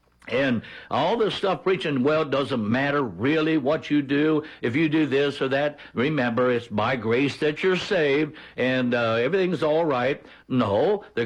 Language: English